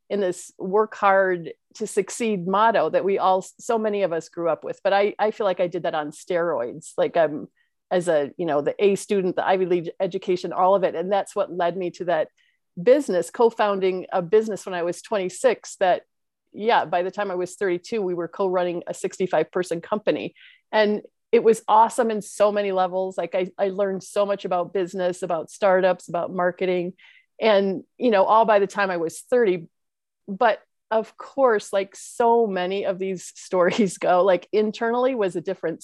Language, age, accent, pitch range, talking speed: English, 40-59, American, 180-215 Hz, 195 wpm